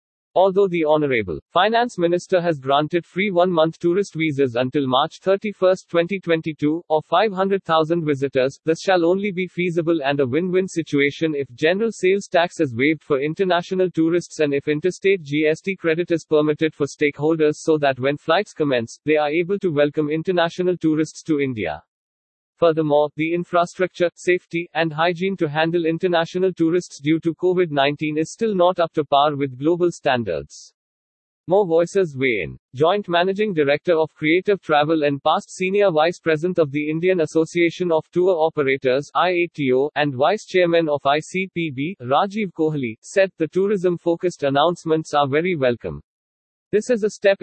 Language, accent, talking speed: English, Indian, 150 wpm